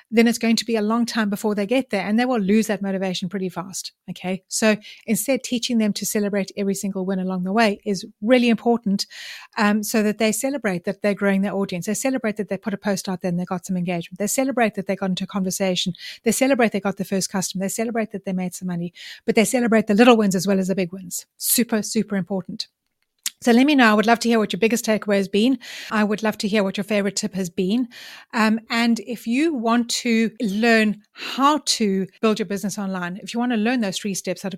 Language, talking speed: English, 255 wpm